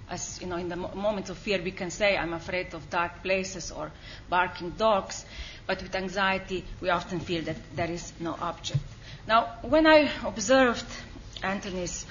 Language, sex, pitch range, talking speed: English, female, 180-225 Hz, 175 wpm